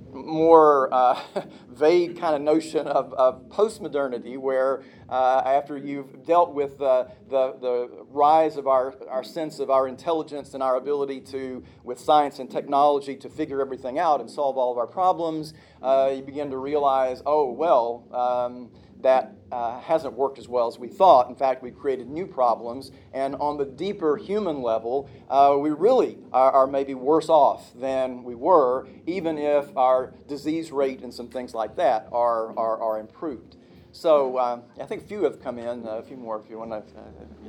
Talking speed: 185 wpm